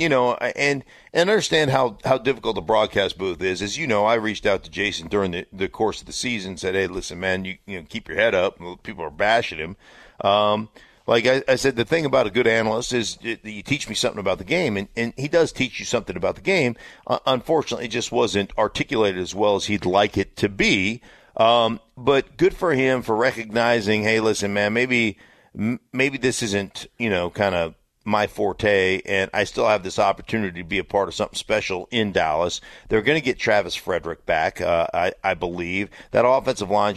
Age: 50-69